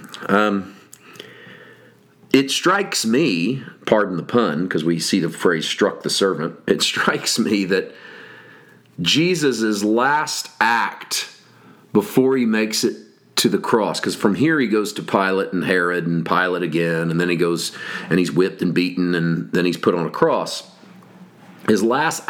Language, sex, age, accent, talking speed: English, male, 40-59, American, 160 wpm